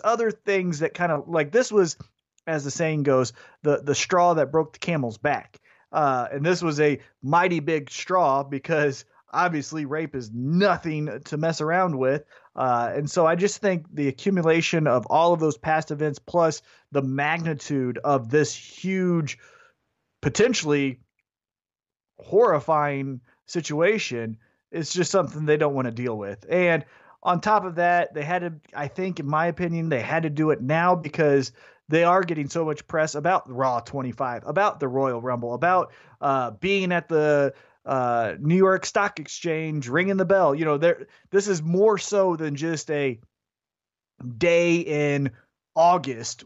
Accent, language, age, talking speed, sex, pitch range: American, English, 30-49, 165 wpm, male, 140-175 Hz